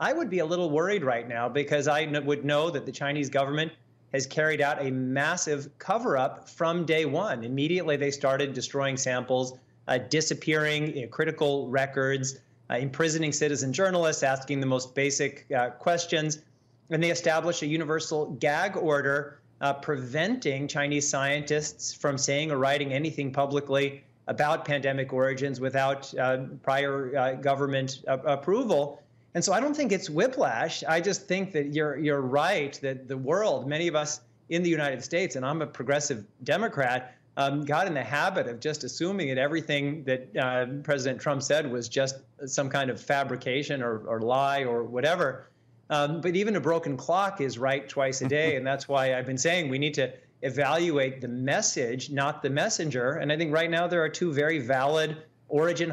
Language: English